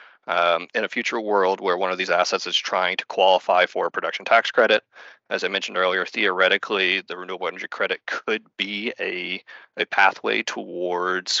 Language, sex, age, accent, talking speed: English, male, 30-49, American, 180 wpm